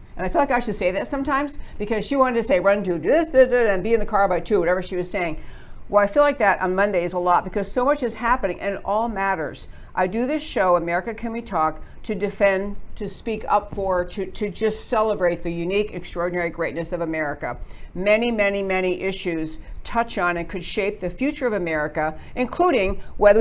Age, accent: 60-79, American